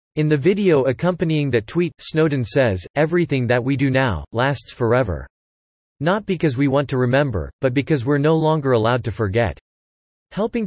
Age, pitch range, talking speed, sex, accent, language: 40-59, 120-150 Hz, 170 wpm, male, American, English